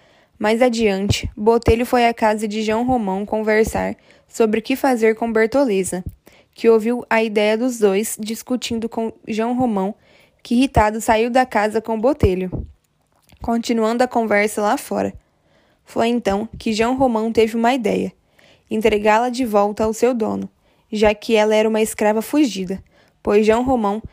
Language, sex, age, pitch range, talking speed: Portuguese, female, 10-29, 215-245 Hz, 155 wpm